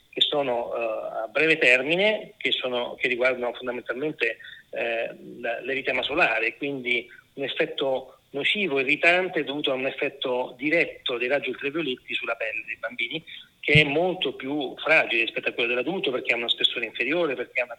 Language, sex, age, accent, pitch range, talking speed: Italian, male, 40-59, native, 140-175 Hz, 160 wpm